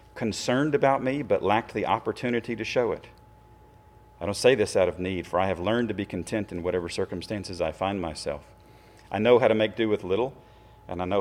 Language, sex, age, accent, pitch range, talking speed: English, male, 40-59, American, 90-120 Hz, 220 wpm